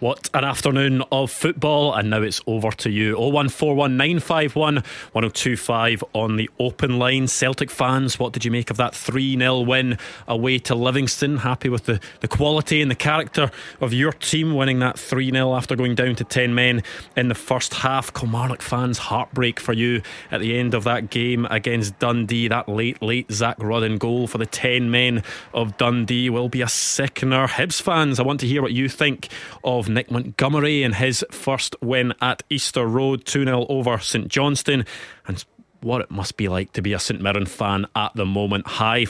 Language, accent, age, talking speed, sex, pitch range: English, British, 20-39, 185 wpm, male, 115-130 Hz